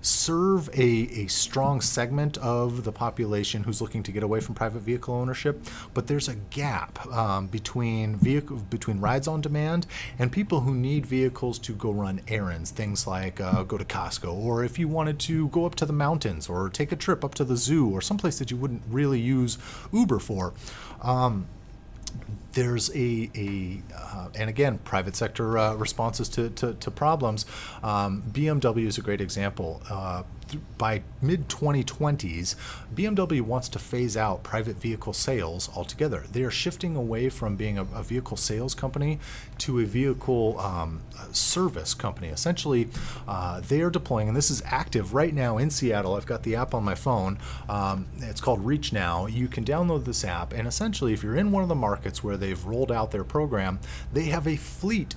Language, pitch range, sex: English, 105-140 Hz, male